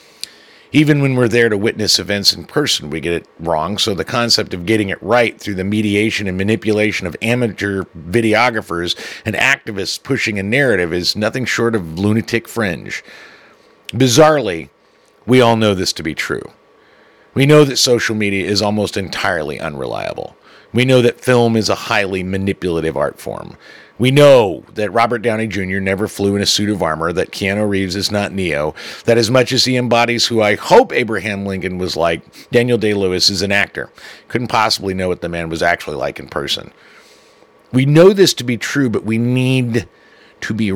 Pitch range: 100-120 Hz